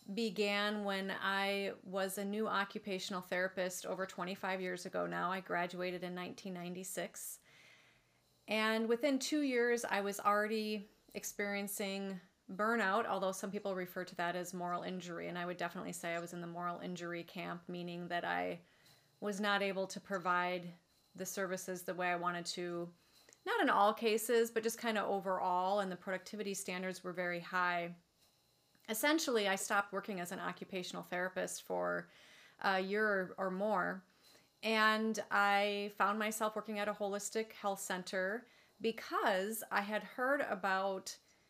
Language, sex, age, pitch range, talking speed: English, female, 30-49, 180-210 Hz, 155 wpm